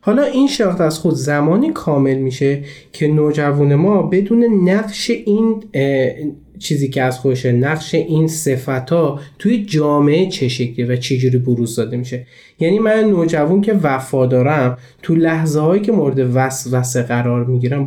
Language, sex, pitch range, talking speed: Persian, male, 130-175 Hz, 150 wpm